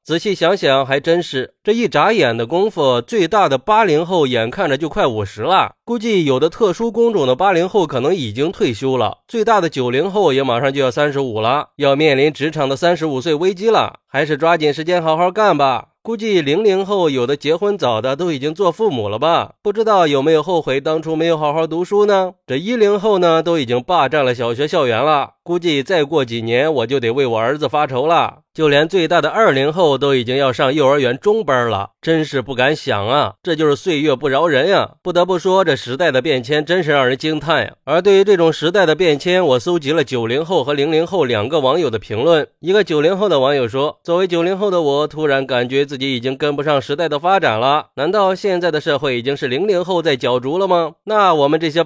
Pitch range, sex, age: 135-180 Hz, male, 20-39